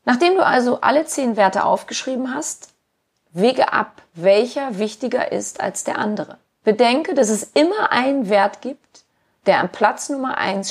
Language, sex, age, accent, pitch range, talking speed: German, female, 30-49, German, 195-250 Hz, 155 wpm